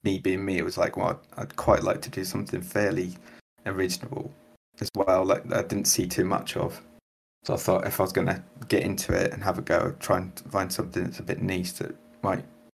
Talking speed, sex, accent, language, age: 235 wpm, male, British, English, 20-39